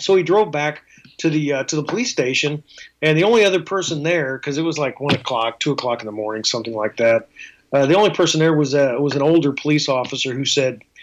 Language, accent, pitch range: English, American, 130-155 Hz